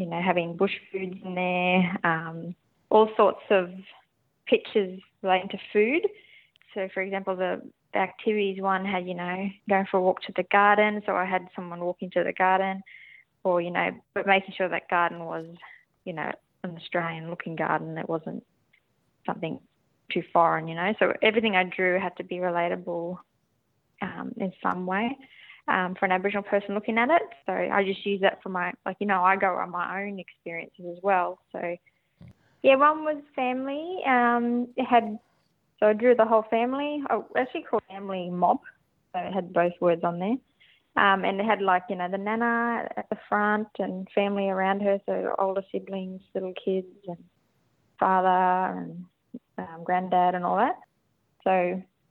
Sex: female